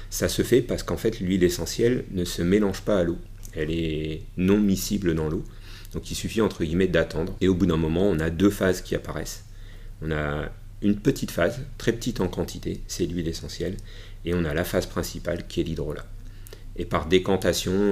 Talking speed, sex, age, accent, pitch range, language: 205 wpm, male, 40-59, French, 80-100 Hz, French